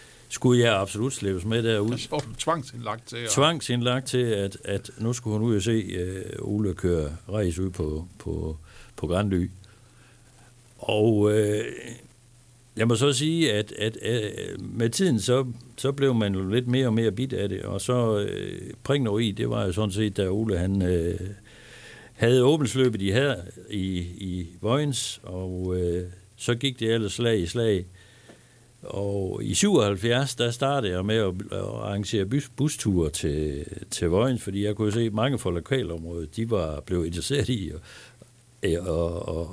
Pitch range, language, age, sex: 95-125 Hz, Danish, 60-79, male